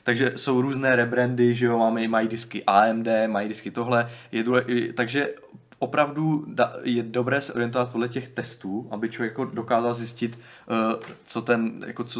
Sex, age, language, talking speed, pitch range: male, 20-39, Czech, 160 wpm, 105-125 Hz